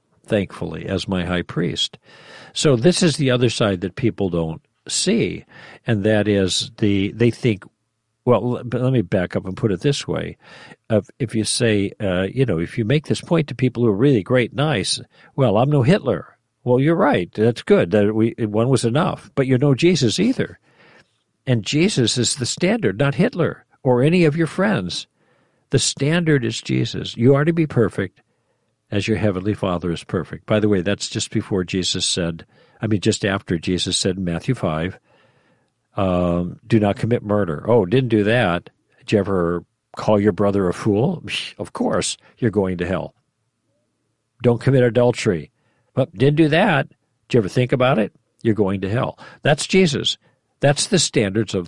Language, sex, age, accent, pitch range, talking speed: English, male, 60-79, American, 100-140 Hz, 180 wpm